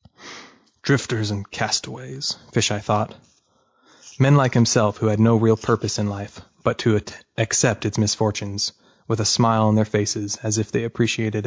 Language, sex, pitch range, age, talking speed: English, male, 105-120 Hz, 20-39, 155 wpm